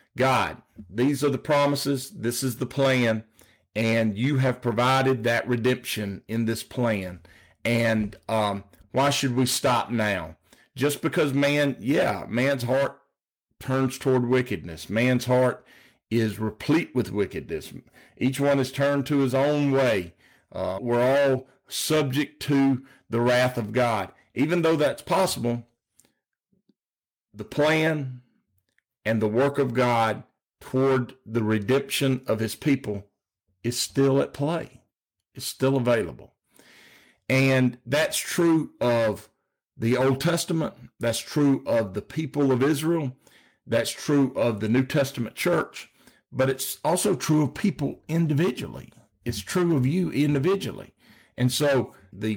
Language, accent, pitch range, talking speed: English, American, 115-140 Hz, 135 wpm